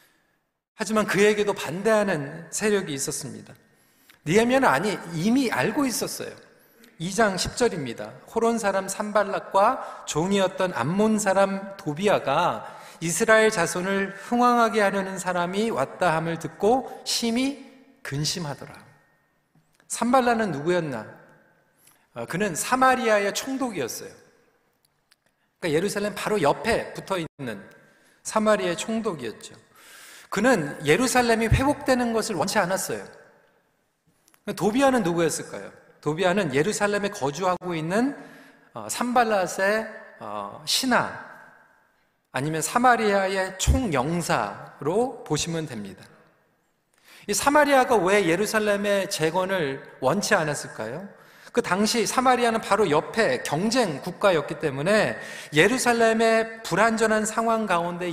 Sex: male